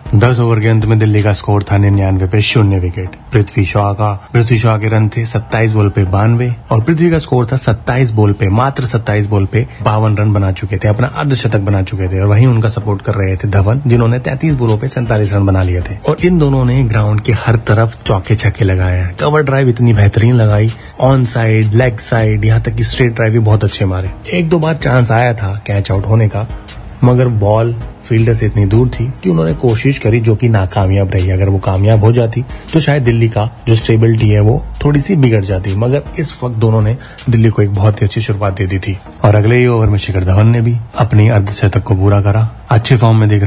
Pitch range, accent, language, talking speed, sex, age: 100-120 Hz, native, Hindi, 230 wpm, male, 30-49